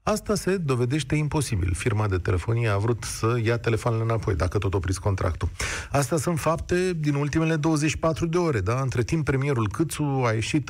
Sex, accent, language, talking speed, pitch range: male, native, Romanian, 180 wpm, 120-180 Hz